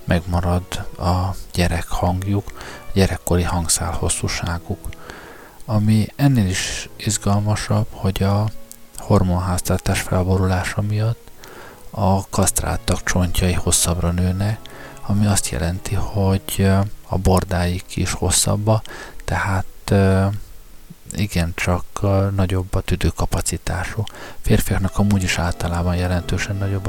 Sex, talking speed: male, 90 wpm